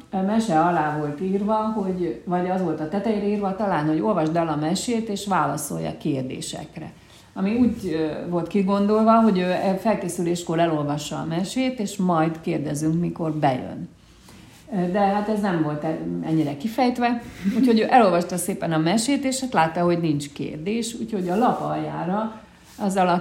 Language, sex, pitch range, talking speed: Hungarian, female, 160-215 Hz, 145 wpm